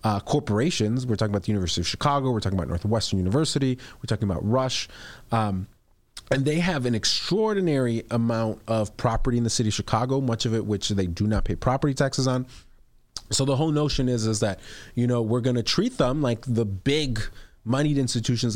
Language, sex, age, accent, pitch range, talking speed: English, male, 30-49, American, 110-130 Hz, 200 wpm